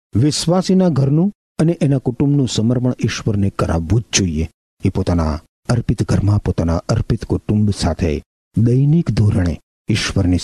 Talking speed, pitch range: 120 wpm, 95-150 Hz